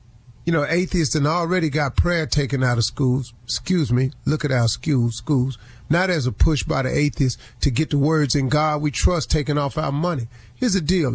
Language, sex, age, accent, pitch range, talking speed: English, male, 40-59, American, 125-190 Hz, 210 wpm